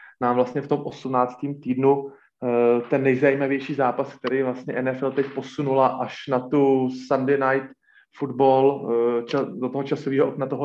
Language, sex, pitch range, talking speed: Slovak, male, 125-140 Hz, 140 wpm